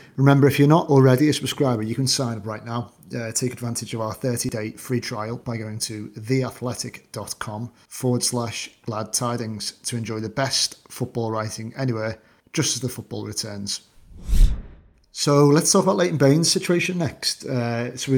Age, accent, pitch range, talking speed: 30-49, British, 110-125 Hz, 170 wpm